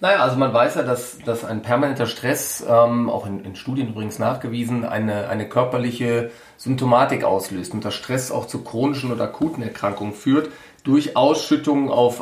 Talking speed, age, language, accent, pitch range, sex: 170 wpm, 40-59, German, German, 110-130 Hz, male